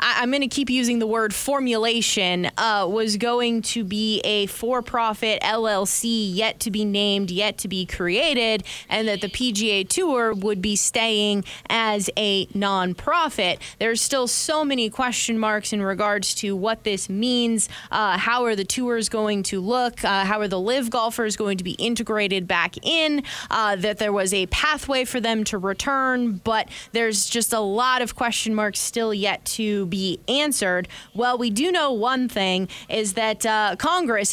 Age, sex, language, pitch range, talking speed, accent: 20-39, female, English, 200-235 Hz, 175 wpm, American